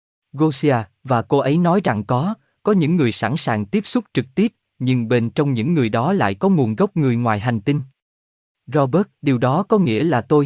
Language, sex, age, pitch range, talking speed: Vietnamese, male, 20-39, 115-160 Hz, 210 wpm